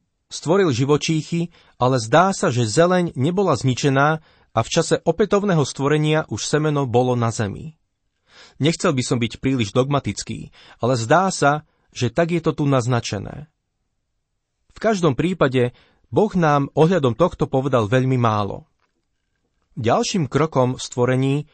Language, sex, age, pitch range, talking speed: Slovak, male, 30-49, 125-155 Hz, 135 wpm